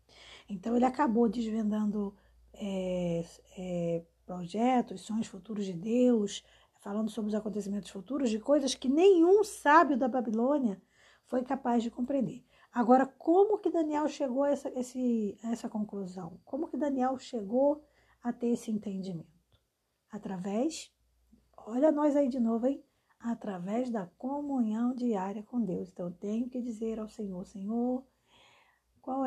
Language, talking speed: Portuguese, 135 wpm